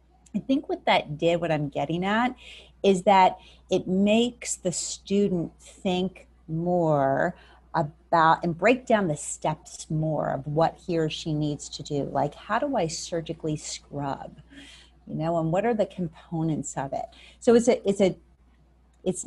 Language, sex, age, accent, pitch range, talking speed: English, female, 30-49, American, 145-195 Hz, 165 wpm